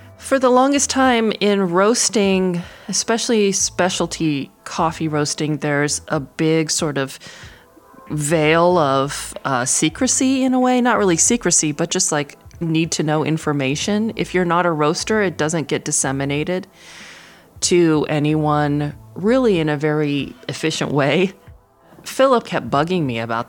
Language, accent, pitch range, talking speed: English, American, 135-180 Hz, 140 wpm